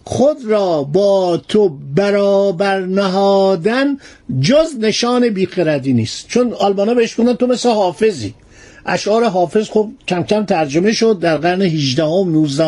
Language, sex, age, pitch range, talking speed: Persian, male, 50-69, 170-240 Hz, 135 wpm